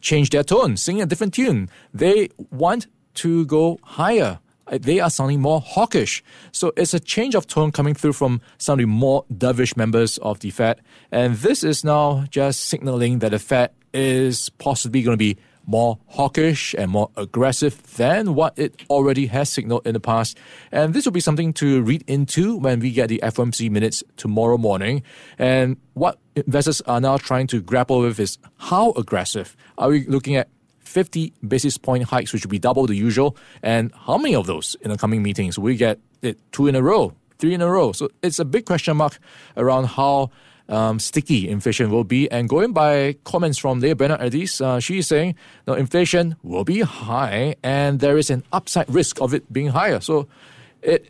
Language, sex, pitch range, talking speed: English, male, 120-155 Hz, 195 wpm